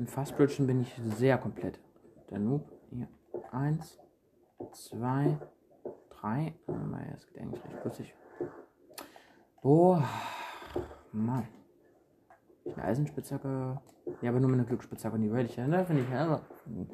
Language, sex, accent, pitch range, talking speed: German, male, German, 120-175 Hz, 120 wpm